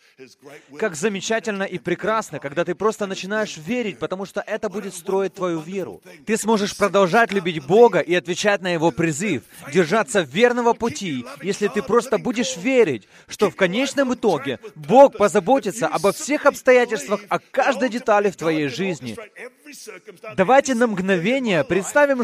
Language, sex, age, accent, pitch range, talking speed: Russian, male, 20-39, native, 190-245 Hz, 145 wpm